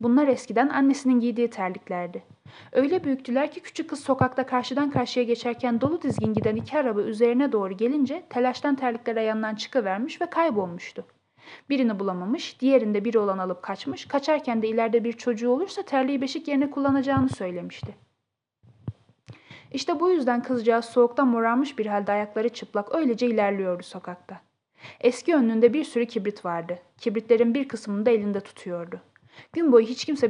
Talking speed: 150 wpm